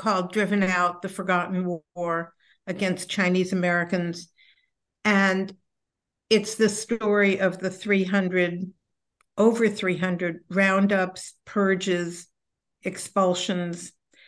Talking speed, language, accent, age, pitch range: 90 wpm, English, American, 60-79, 180-215 Hz